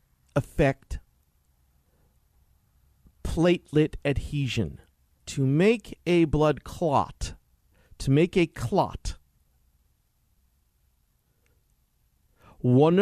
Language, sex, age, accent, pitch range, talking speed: English, male, 40-59, American, 105-145 Hz, 60 wpm